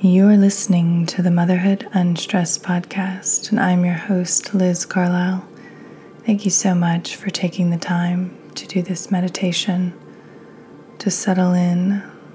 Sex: female